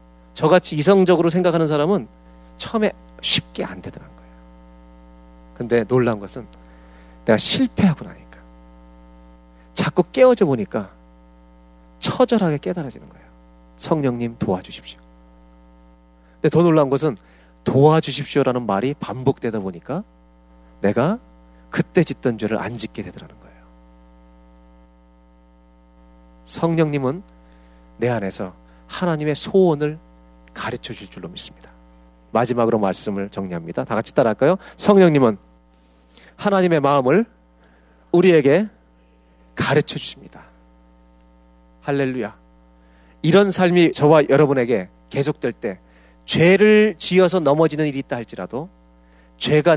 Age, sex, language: 40-59, male, Korean